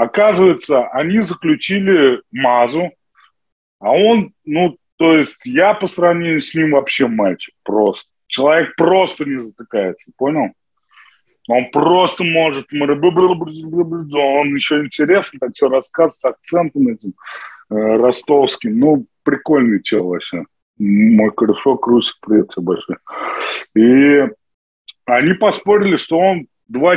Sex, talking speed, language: male, 110 wpm, Russian